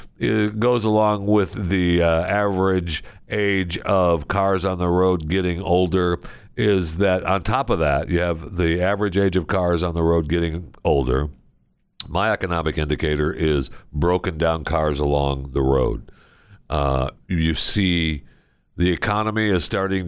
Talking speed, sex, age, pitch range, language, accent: 150 wpm, male, 60-79, 80-105 Hz, English, American